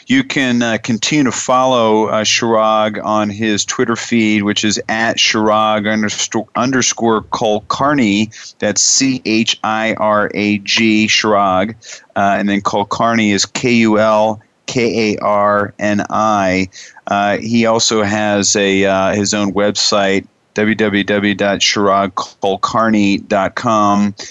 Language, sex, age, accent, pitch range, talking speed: English, male, 40-59, American, 105-115 Hz, 120 wpm